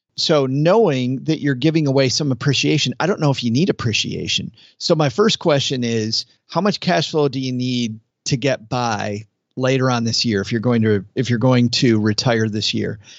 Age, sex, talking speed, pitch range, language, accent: 40-59, male, 205 wpm, 115-145 Hz, English, American